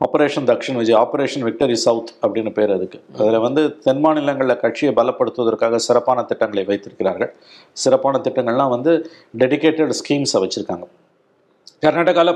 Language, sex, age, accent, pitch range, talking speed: Tamil, male, 50-69, native, 110-155 Hz, 120 wpm